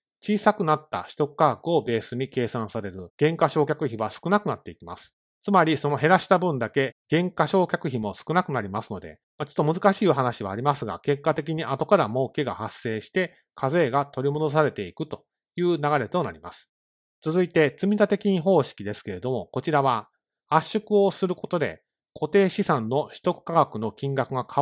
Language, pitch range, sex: Japanese, 120-180 Hz, male